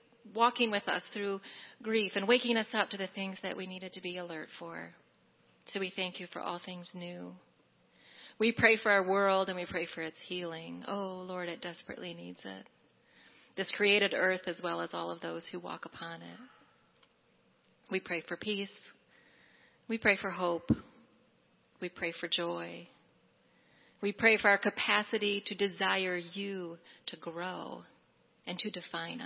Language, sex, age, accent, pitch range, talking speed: English, female, 40-59, American, 170-200 Hz, 170 wpm